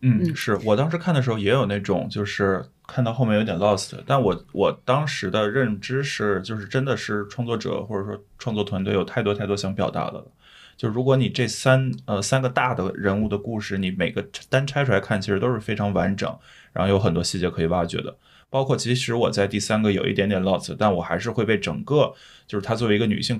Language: Chinese